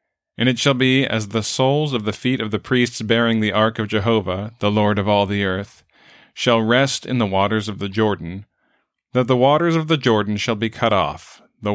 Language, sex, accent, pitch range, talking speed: English, male, American, 100-120 Hz, 220 wpm